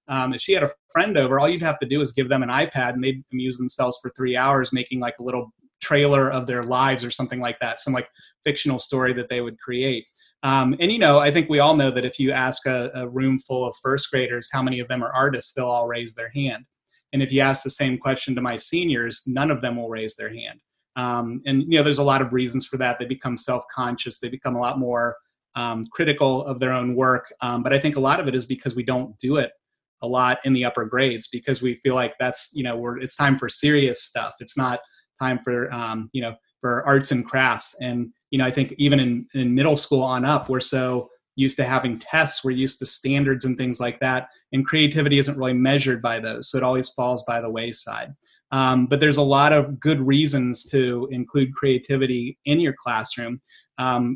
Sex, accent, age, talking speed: male, American, 30-49, 240 wpm